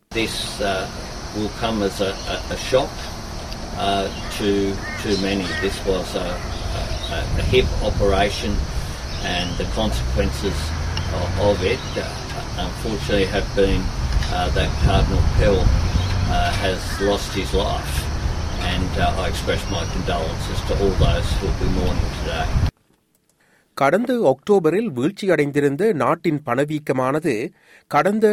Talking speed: 125 wpm